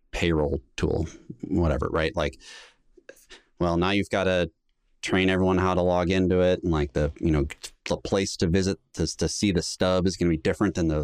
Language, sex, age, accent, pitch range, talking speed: English, male, 30-49, American, 80-95 Hz, 205 wpm